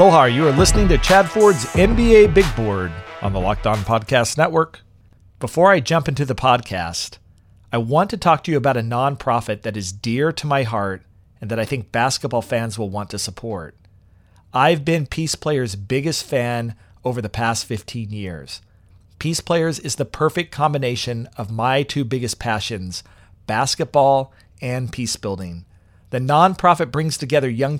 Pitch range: 100-140 Hz